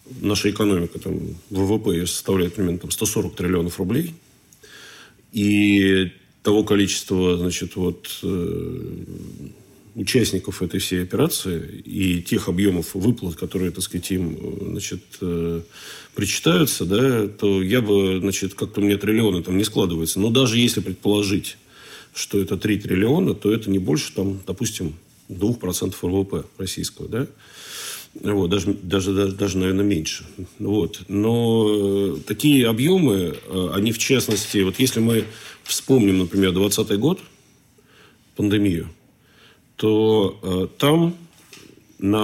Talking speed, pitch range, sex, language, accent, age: 115 wpm, 95-110 Hz, male, Russian, native, 40-59